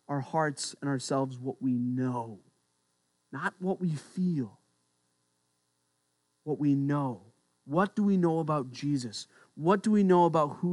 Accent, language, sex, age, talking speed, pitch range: American, English, male, 30-49, 145 wpm, 115-170 Hz